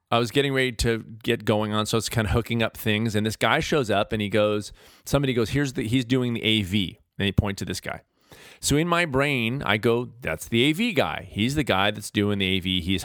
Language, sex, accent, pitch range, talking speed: English, male, American, 105-135 Hz, 255 wpm